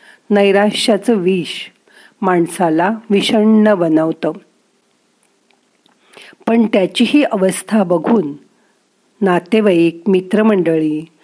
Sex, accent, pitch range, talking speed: female, native, 170-225 Hz, 60 wpm